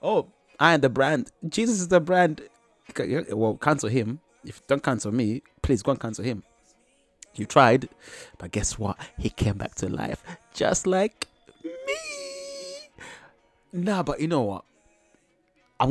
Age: 30-49